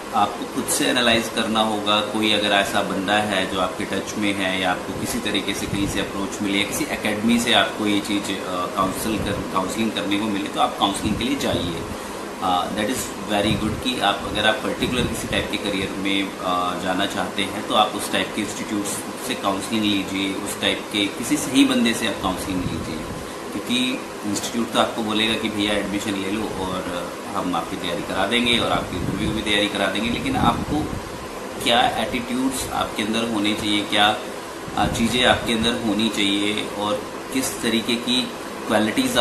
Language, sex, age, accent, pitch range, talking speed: Hindi, male, 30-49, native, 100-115 Hz, 190 wpm